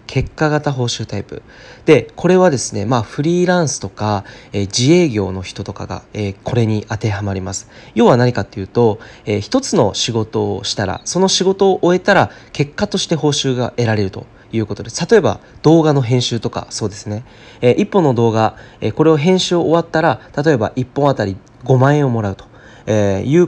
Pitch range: 105-145 Hz